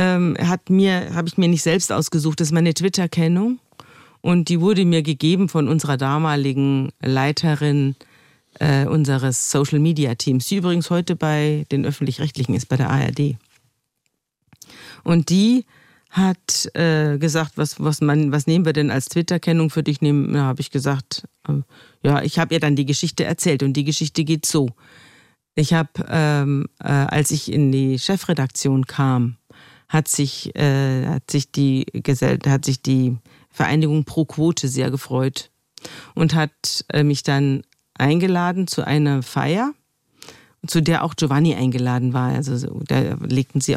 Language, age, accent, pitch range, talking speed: German, 50-69, German, 135-165 Hz, 155 wpm